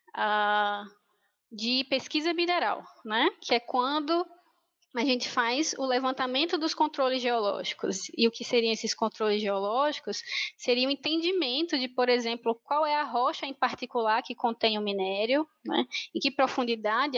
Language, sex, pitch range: Portuguese, female, 225-295 Hz